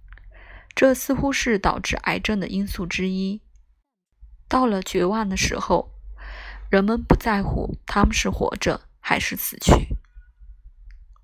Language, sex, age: Chinese, female, 20-39